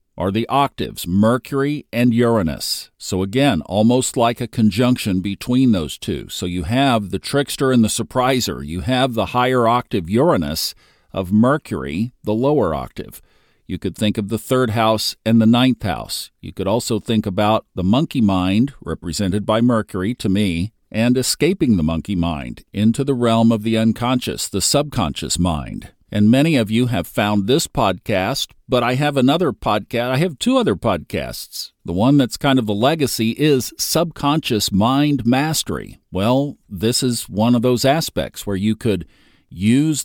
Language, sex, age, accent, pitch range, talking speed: English, male, 50-69, American, 100-130 Hz, 170 wpm